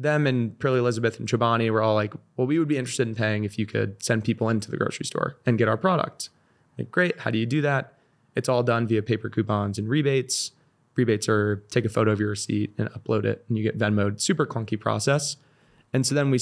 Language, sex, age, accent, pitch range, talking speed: English, male, 20-39, American, 110-125 Hz, 240 wpm